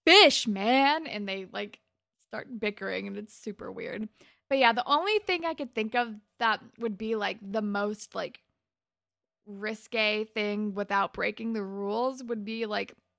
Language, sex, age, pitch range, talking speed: English, female, 20-39, 195-235 Hz, 165 wpm